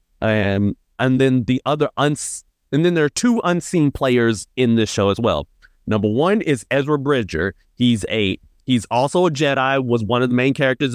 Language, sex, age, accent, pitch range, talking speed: English, male, 30-49, American, 110-135 Hz, 190 wpm